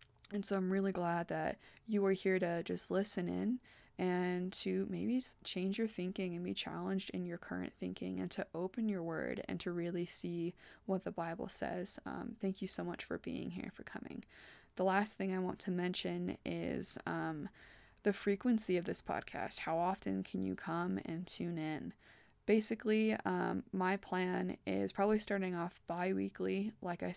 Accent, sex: American, female